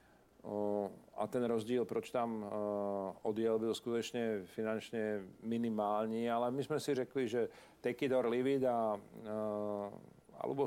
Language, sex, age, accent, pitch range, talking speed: Czech, male, 50-69, native, 105-120 Hz, 110 wpm